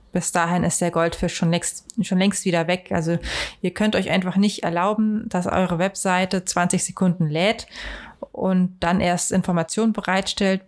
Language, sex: German, female